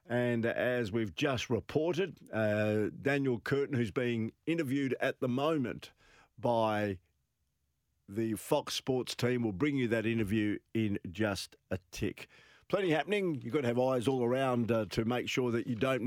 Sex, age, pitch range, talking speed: male, 50-69, 115-140 Hz, 165 wpm